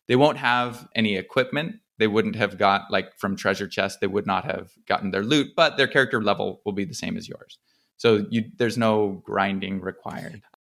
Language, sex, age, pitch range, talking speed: English, male, 20-39, 105-125 Hz, 195 wpm